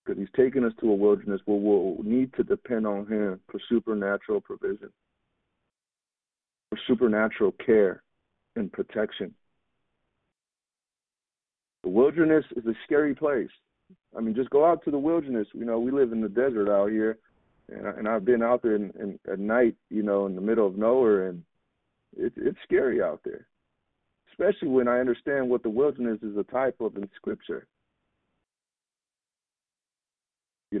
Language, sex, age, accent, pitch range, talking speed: English, male, 40-59, American, 105-155 Hz, 160 wpm